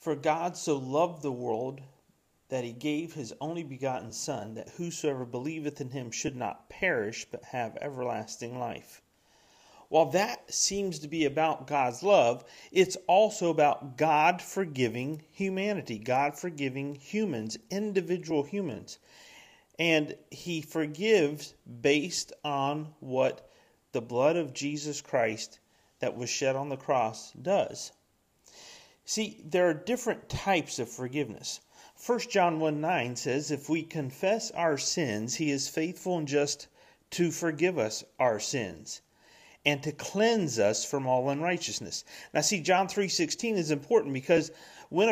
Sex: male